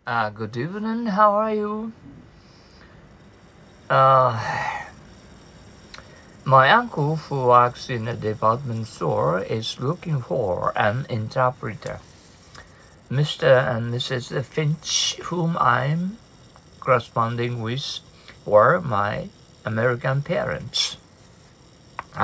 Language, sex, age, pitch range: Japanese, male, 60-79, 115-150 Hz